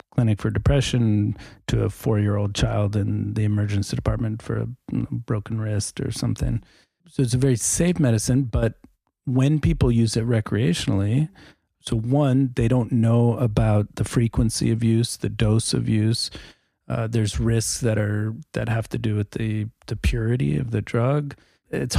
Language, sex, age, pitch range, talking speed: English, male, 40-59, 105-120 Hz, 165 wpm